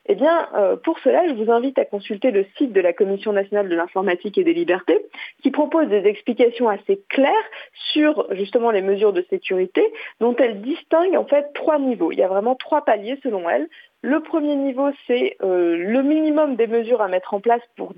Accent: French